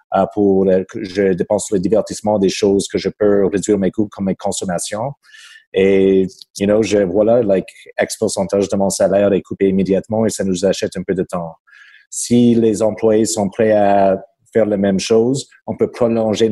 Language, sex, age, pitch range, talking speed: French, male, 30-49, 100-115 Hz, 190 wpm